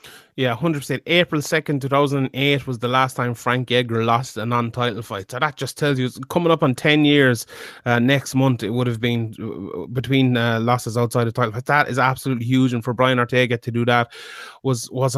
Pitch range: 125-145 Hz